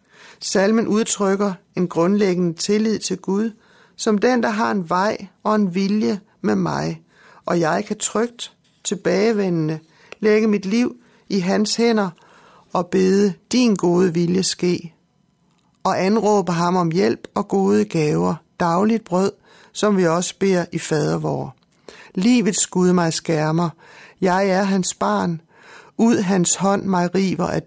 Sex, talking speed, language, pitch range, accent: male, 145 wpm, Danish, 170-210 Hz, native